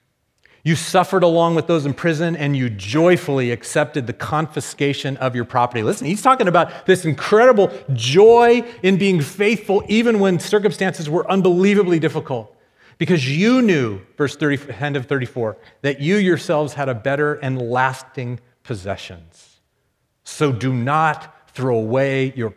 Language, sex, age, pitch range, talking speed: English, male, 40-59, 125-185 Hz, 145 wpm